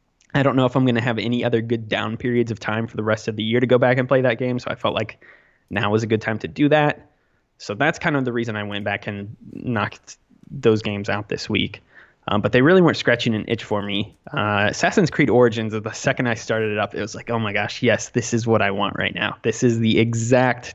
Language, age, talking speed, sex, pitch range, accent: English, 20-39, 270 wpm, male, 105-125 Hz, American